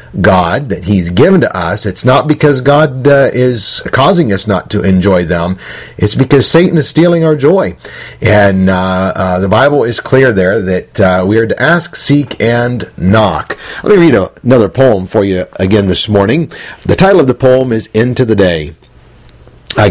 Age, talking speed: 50-69, 185 wpm